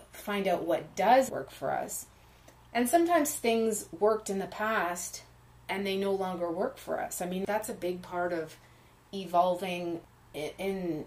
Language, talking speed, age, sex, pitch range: English, 165 wpm, 30-49, female, 175-210 Hz